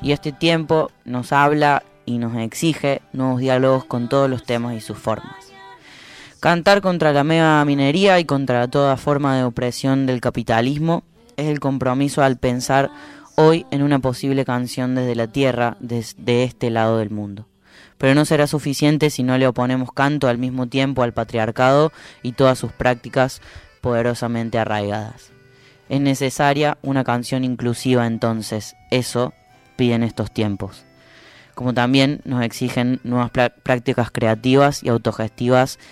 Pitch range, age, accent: 120-140 Hz, 10-29, Argentinian